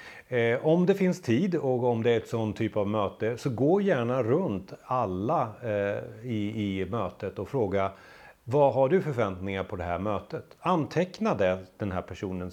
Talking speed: 175 wpm